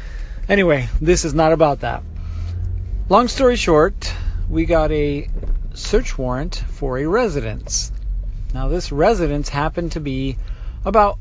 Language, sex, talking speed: English, male, 130 wpm